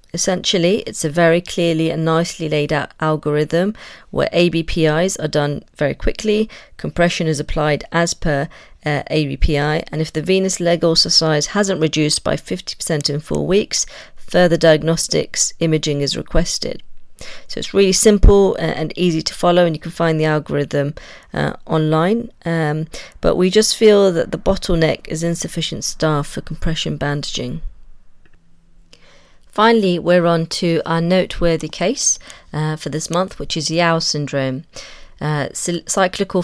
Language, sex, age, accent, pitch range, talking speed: English, female, 40-59, British, 150-185 Hz, 145 wpm